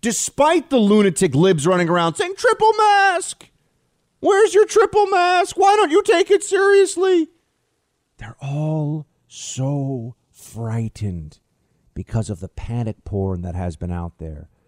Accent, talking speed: American, 135 wpm